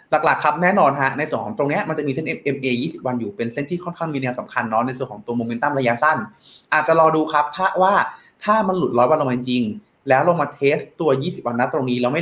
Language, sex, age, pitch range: Thai, male, 20-39, 125-175 Hz